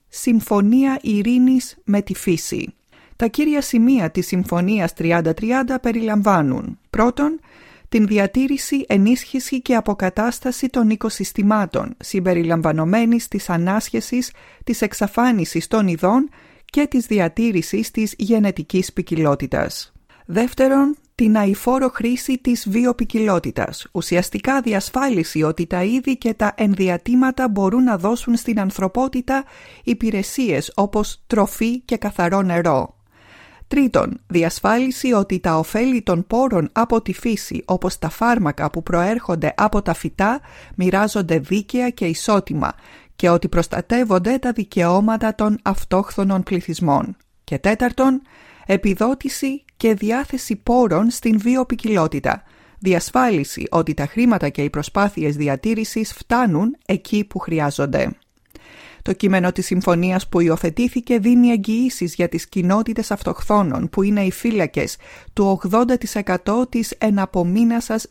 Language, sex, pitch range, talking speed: Greek, female, 180-245 Hz, 115 wpm